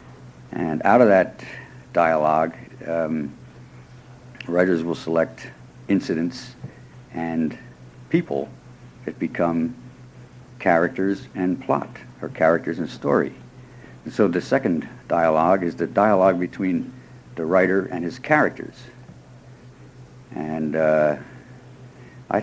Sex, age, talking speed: male, 60-79, 100 wpm